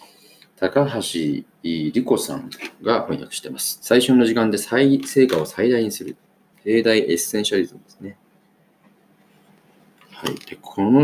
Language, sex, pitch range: Japanese, male, 95-125 Hz